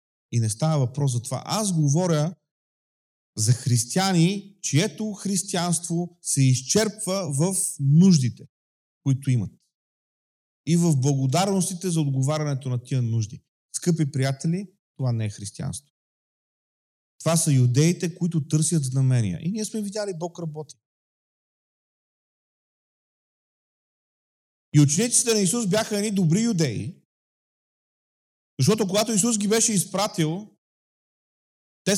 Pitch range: 145-215 Hz